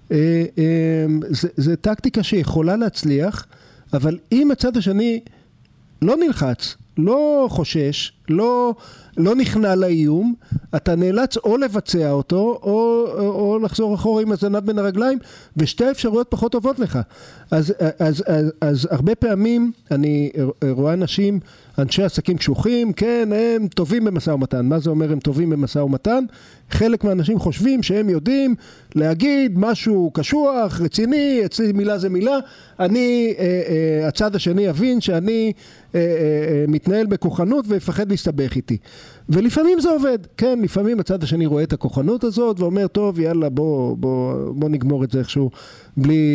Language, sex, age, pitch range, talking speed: Hebrew, male, 50-69, 150-220 Hz, 140 wpm